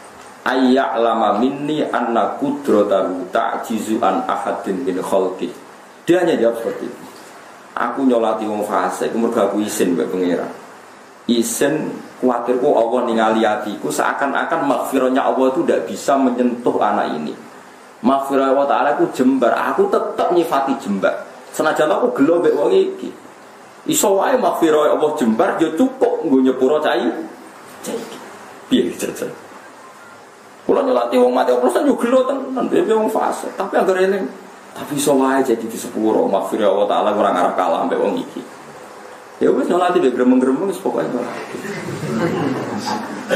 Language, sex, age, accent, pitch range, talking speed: Indonesian, male, 40-59, native, 115-175 Hz, 145 wpm